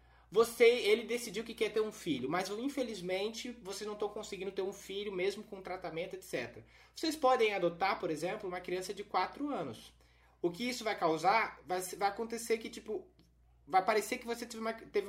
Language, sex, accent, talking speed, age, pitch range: Portuguese, male, Brazilian, 190 wpm, 20-39, 175-250 Hz